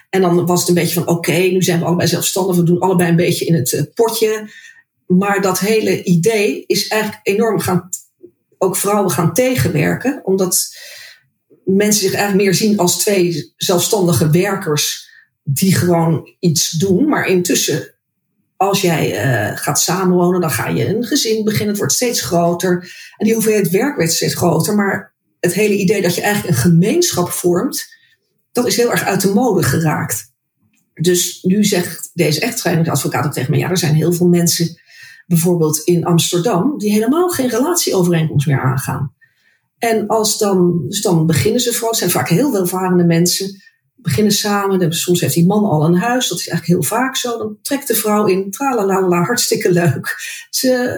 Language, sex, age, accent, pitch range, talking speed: Dutch, female, 40-59, Dutch, 170-215 Hz, 180 wpm